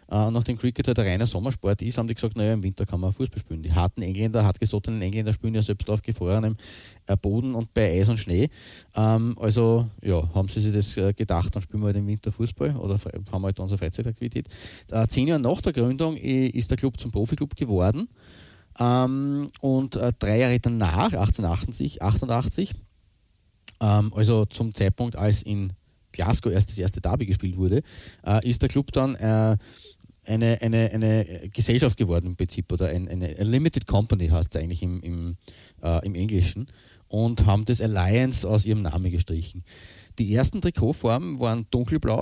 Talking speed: 180 wpm